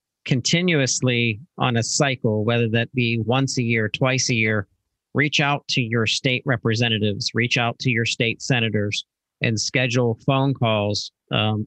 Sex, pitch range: male, 110-130 Hz